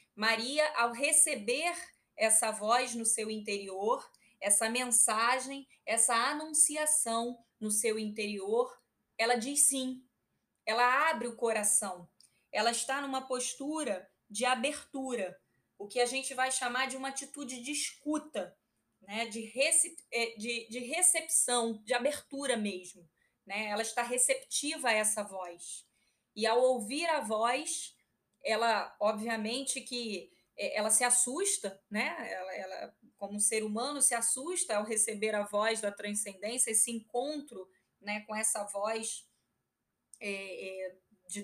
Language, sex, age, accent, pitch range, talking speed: Portuguese, female, 20-39, Brazilian, 215-270 Hz, 115 wpm